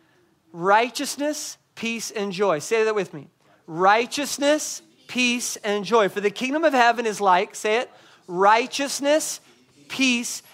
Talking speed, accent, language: 130 wpm, American, English